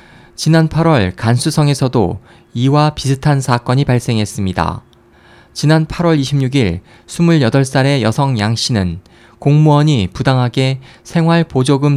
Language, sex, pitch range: Korean, male, 115-150 Hz